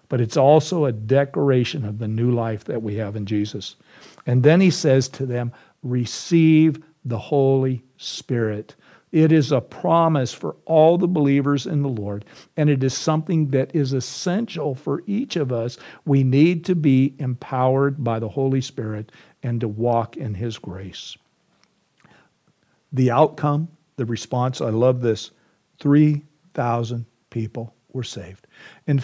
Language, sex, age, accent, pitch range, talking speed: English, male, 50-69, American, 120-150 Hz, 150 wpm